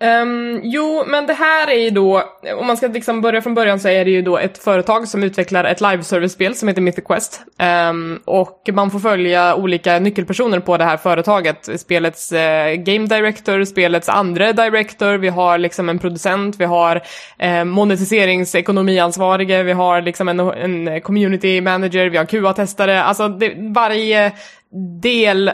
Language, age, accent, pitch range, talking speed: Swedish, 20-39, native, 175-210 Hz, 170 wpm